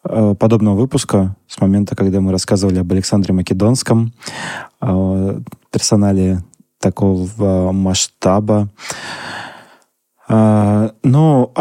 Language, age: Russian, 20-39